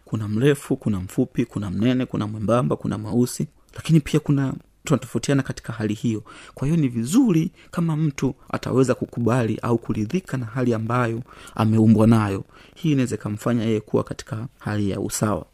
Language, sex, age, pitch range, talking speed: Swahili, male, 30-49, 110-135 Hz, 160 wpm